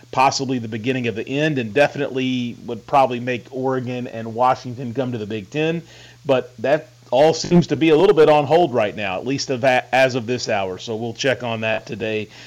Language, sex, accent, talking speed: English, male, American, 220 wpm